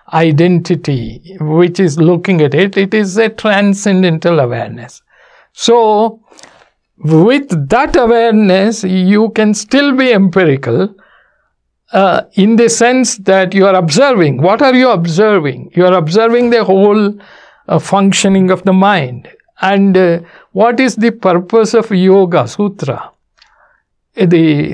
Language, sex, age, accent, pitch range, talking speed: English, male, 60-79, Indian, 165-210 Hz, 125 wpm